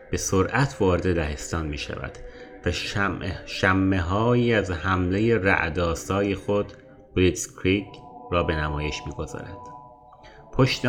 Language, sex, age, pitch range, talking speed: Persian, male, 30-49, 85-110 Hz, 120 wpm